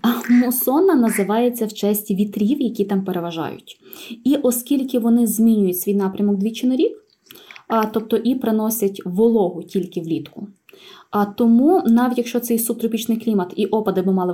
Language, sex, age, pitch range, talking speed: Ukrainian, female, 20-39, 200-250 Hz, 145 wpm